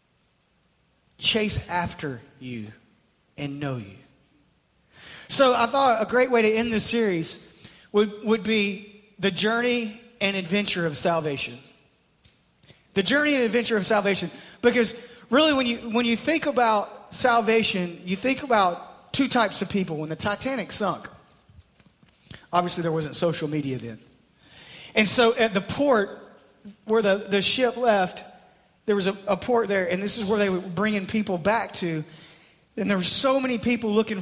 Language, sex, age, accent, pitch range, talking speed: English, male, 40-59, American, 180-240 Hz, 160 wpm